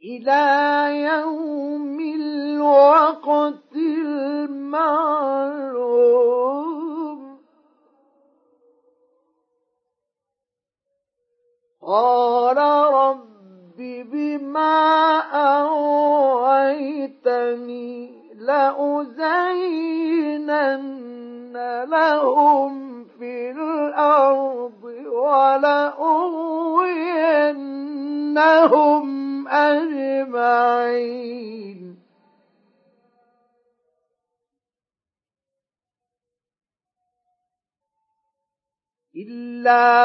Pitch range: 270-315 Hz